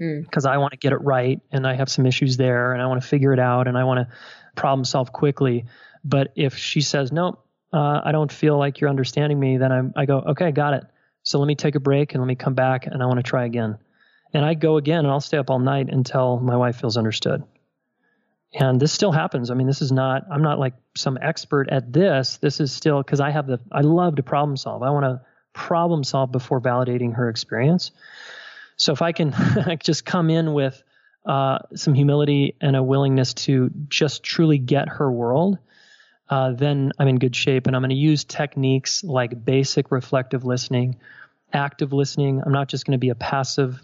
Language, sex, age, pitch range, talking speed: English, male, 30-49, 130-150 Hz, 225 wpm